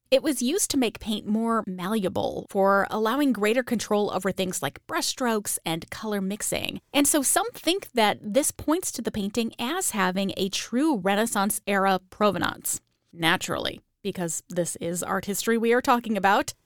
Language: English